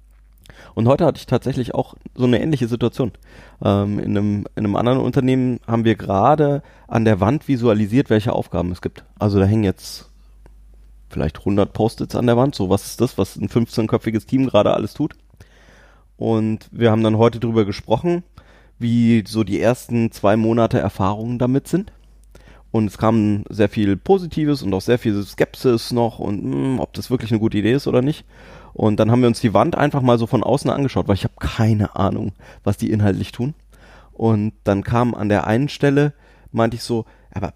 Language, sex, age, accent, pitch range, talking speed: German, male, 30-49, German, 105-125 Hz, 190 wpm